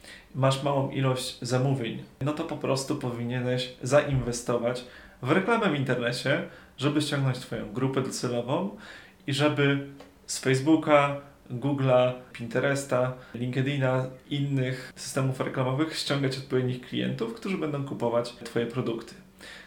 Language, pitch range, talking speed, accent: Polish, 125-145 Hz, 115 wpm, native